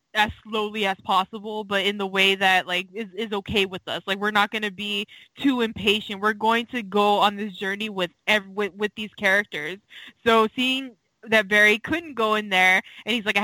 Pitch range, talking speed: 195-225 Hz, 215 wpm